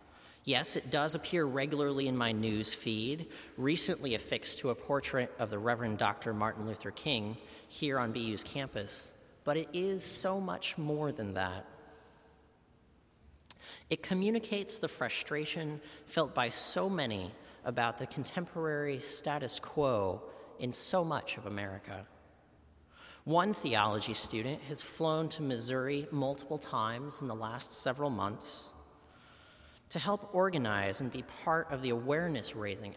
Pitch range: 110-160 Hz